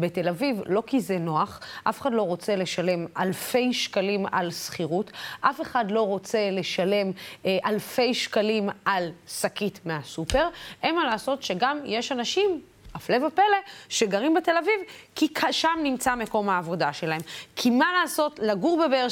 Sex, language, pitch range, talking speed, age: female, Hebrew, 210-310 Hz, 150 wpm, 20-39